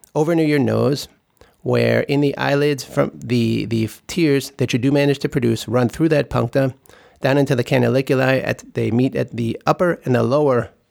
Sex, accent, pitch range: male, American, 115-145 Hz